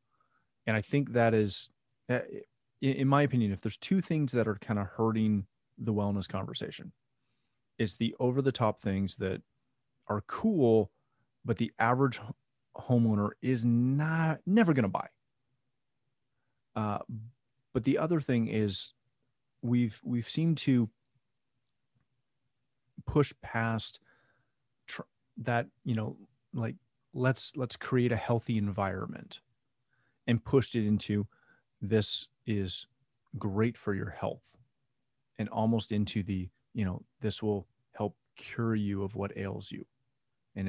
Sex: male